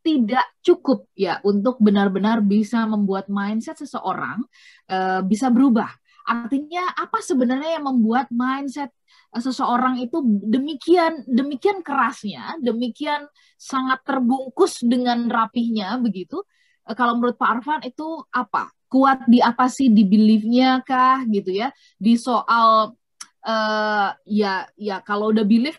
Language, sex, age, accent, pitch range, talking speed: Indonesian, female, 20-39, native, 220-295 Hz, 125 wpm